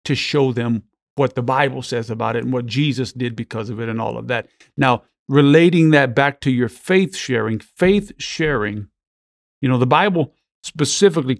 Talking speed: 185 wpm